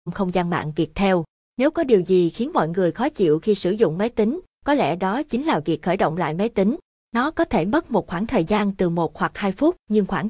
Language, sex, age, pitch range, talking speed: Vietnamese, female, 20-39, 175-230 Hz, 260 wpm